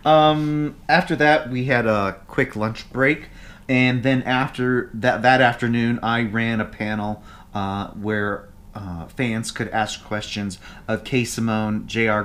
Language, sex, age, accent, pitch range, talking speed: English, male, 30-49, American, 105-140 Hz, 145 wpm